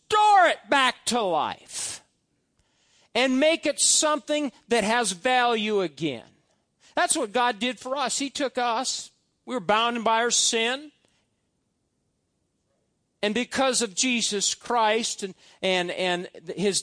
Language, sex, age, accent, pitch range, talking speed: English, male, 50-69, American, 235-320 Hz, 130 wpm